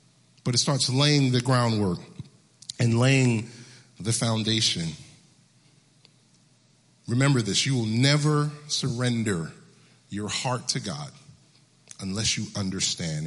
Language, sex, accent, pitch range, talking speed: English, male, American, 130-170 Hz, 105 wpm